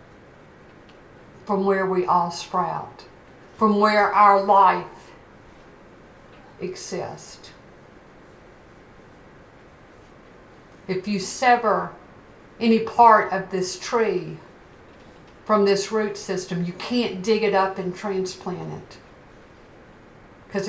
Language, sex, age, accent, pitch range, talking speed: English, female, 60-79, American, 185-215 Hz, 90 wpm